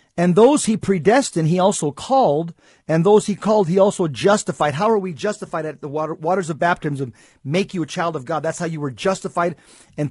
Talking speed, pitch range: 210 wpm, 160-205 Hz